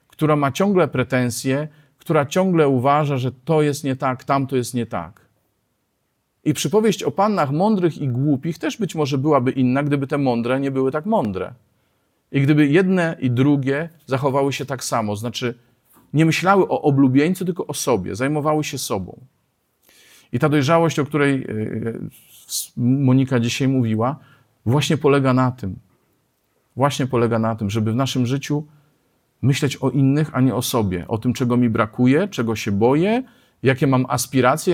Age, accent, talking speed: 40-59, native, 160 wpm